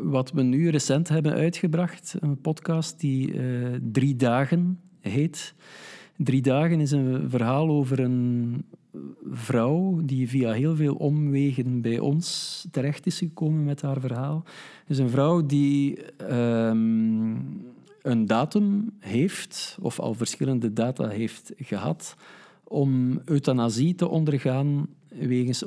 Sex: male